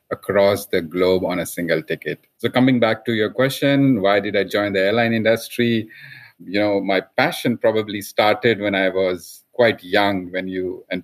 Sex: male